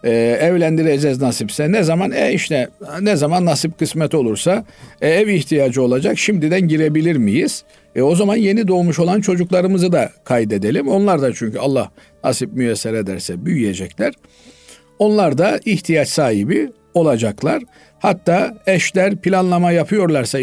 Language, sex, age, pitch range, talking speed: Turkish, male, 50-69, 120-175 Hz, 130 wpm